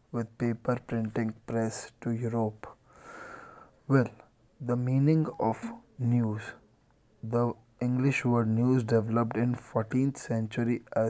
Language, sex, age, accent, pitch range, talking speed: English, male, 20-39, Indian, 115-125 Hz, 110 wpm